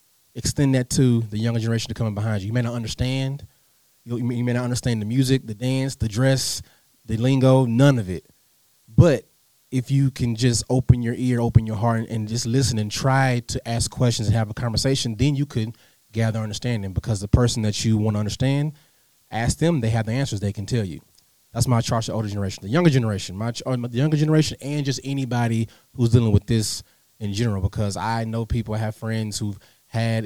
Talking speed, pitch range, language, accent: 215 wpm, 110-130 Hz, English, American